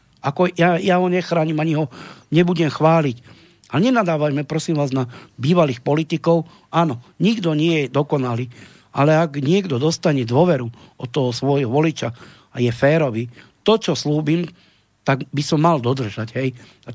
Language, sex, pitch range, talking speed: Slovak, male, 135-175 Hz, 150 wpm